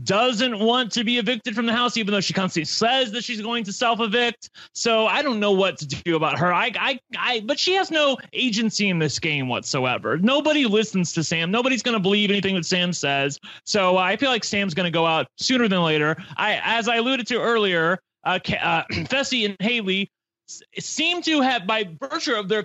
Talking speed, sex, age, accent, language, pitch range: 210 wpm, male, 30-49, American, English, 195-255 Hz